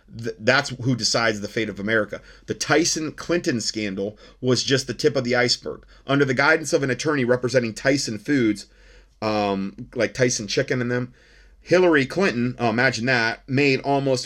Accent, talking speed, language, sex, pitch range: American, 160 wpm, English, male, 110-135 Hz